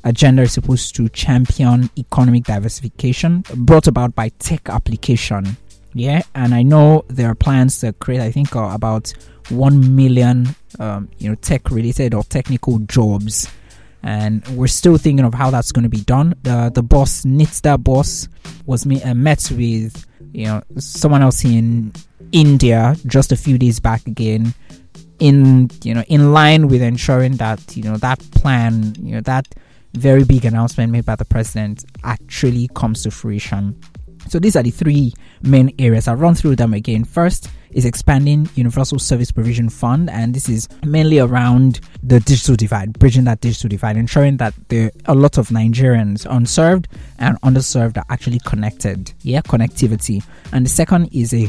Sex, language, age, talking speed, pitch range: male, English, 20-39, 165 wpm, 110-135 Hz